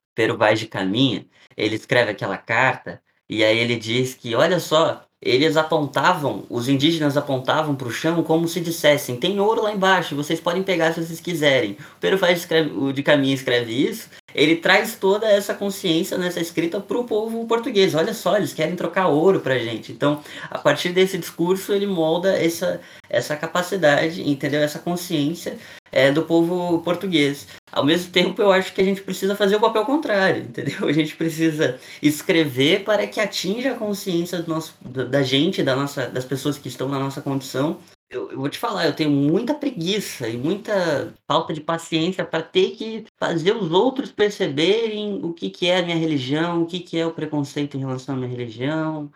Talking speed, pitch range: 190 wpm, 145-190 Hz